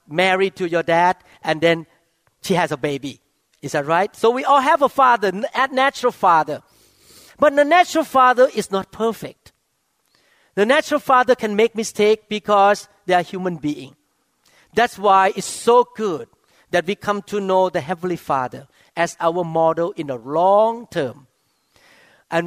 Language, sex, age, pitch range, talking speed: English, male, 50-69, 175-225 Hz, 165 wpm